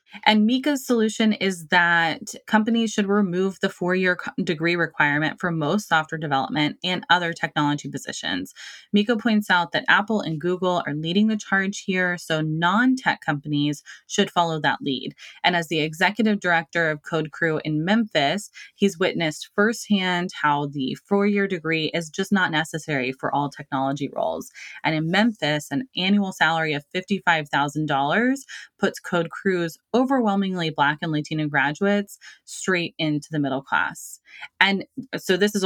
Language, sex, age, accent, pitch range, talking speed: English, female, 20-39, American, 155-200 Hz, 150 wpm